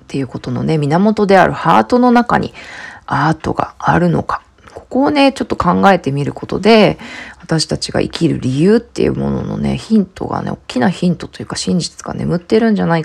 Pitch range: 145-220 Hz